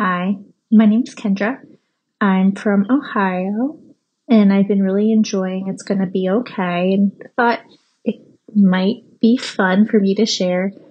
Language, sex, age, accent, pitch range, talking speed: English, female, 20-39, American, 195-255 Hz, 155 wpm